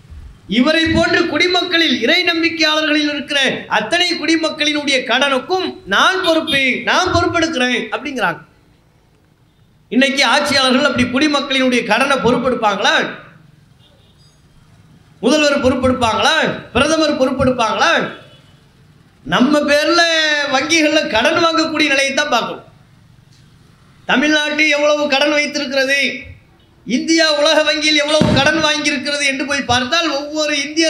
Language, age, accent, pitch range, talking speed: English, 30-49, Indian, 265-315 Hz, 85 wpm